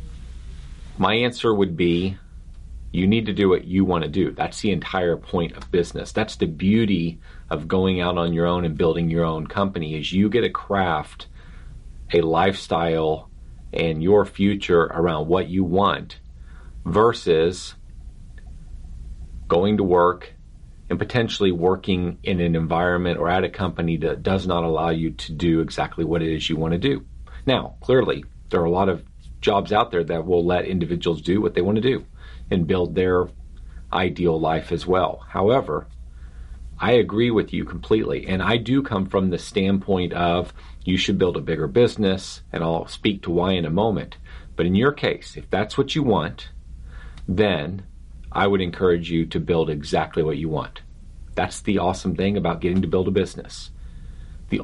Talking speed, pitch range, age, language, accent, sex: 180 wpm, 75-95 Hz, 40-59, English, American, male